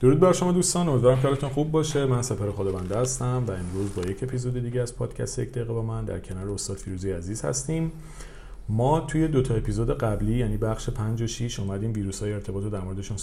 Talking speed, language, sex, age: 220 wpm, Persian, male, 40-59